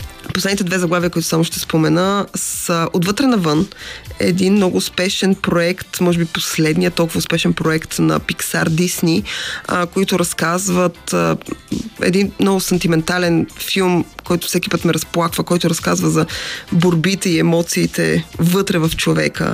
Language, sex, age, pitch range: Bulgarian, female, 20-39, 165-195 Hz